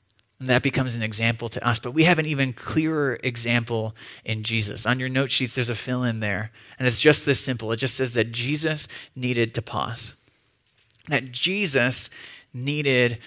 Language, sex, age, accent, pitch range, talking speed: English, male, 20-39, American, 130-190 Hz, 180 wpm